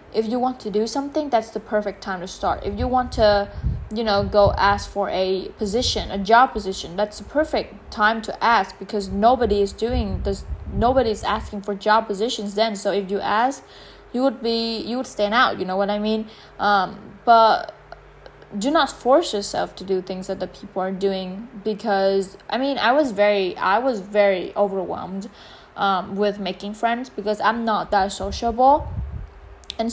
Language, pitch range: English, 195-220 Hz